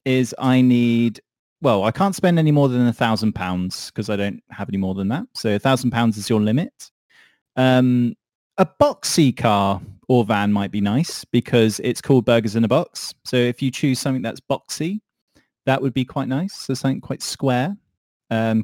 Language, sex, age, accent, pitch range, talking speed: English, male, 30-49, British, 115-145 Hz, 195 wpm